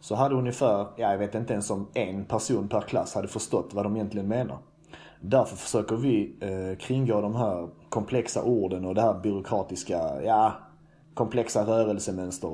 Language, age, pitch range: Swedish, 30-49, 110-140 Hz